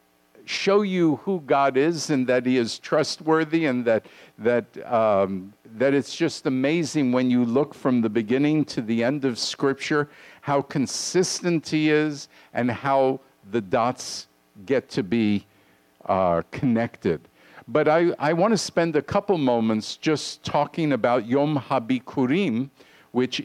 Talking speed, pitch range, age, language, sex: 145 wpm, 120-155 Hz, 50-69, English, male